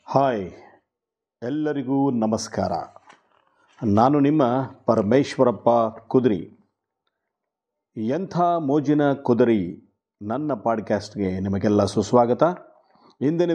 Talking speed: 65 wpm